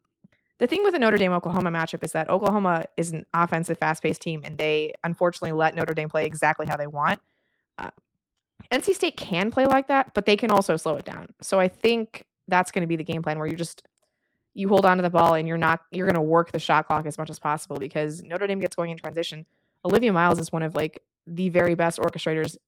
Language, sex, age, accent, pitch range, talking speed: English, female, 20-39, American, 155-190 Hz, 240 wpm